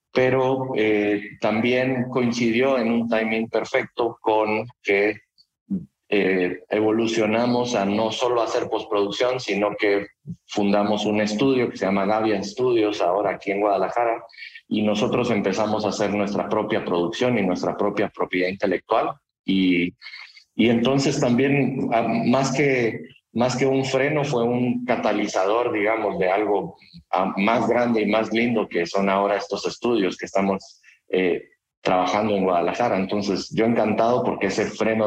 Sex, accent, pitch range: male, Mexican, 95-120 Hz